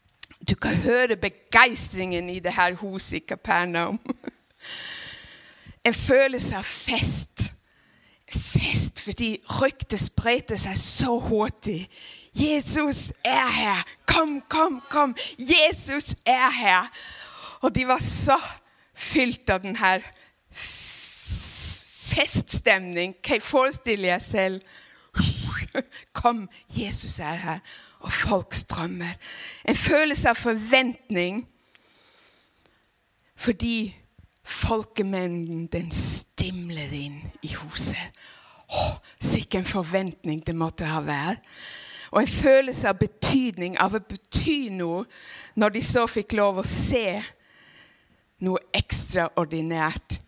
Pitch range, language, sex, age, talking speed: 180-255 Hz, Danish, female, 60-79, 100 wpm